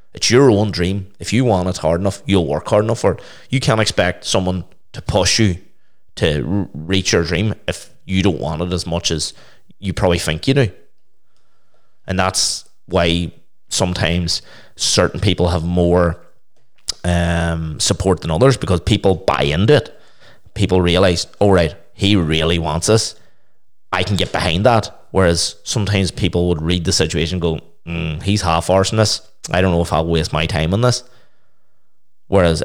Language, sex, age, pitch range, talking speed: English, male, 30-49, 85-105 Hz, 175 wpm